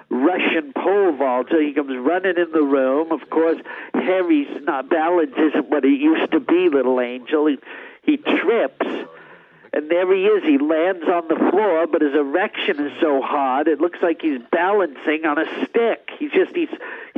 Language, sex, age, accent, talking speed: English, male, 50-69, American, 185 wpm